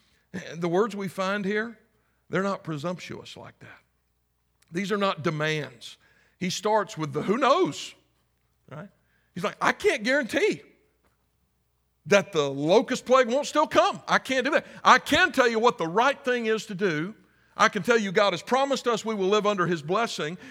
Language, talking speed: English, 180 wpm